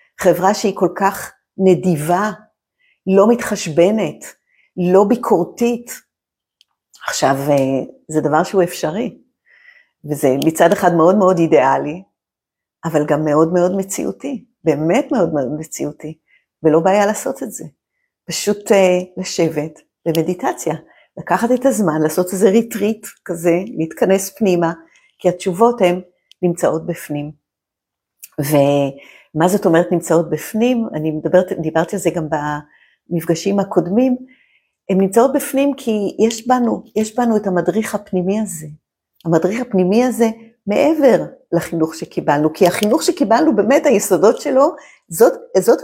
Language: Hebrew